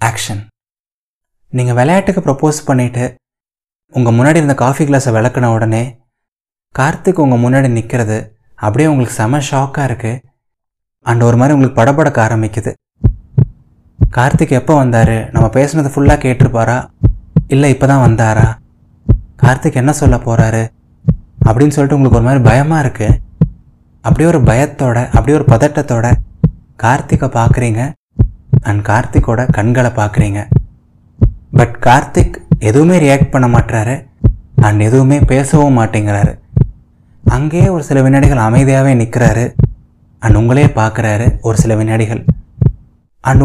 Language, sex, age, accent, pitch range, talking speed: Tamil, male, 20-39, native, 115-145 Hz, 115 wpm